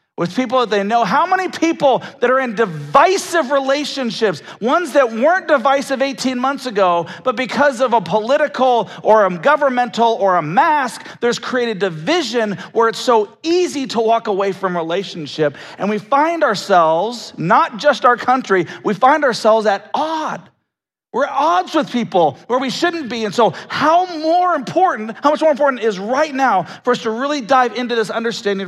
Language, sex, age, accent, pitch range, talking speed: English, male, 40-59, American, 210-290 Hz, 180 wpm